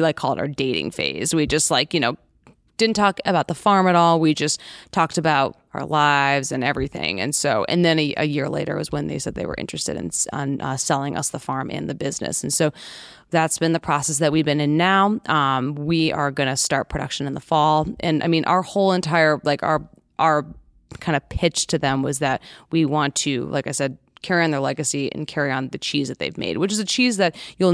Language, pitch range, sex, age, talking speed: English, 140-165 Hz, female, 20-39, 240 wpm